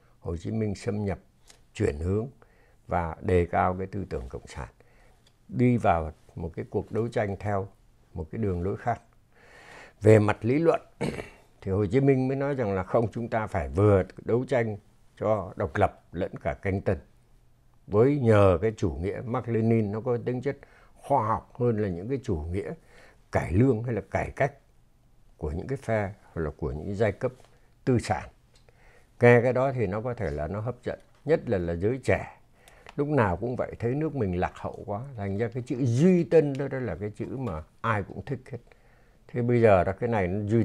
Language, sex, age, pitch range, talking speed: Vietnamese, male, 60-79, 95-120 Hz, 205 wpm